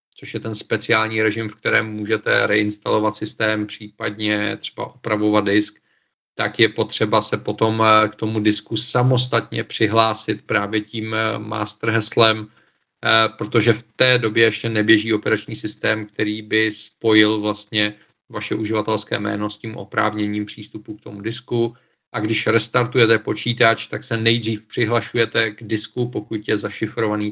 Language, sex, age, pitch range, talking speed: Czech, male, 40-59, 105-120 Hz, 140 wpm